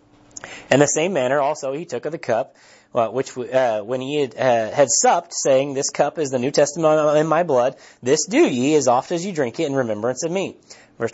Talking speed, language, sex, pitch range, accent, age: 225 wpm, English, male, 130-165 Hz, American, 30-49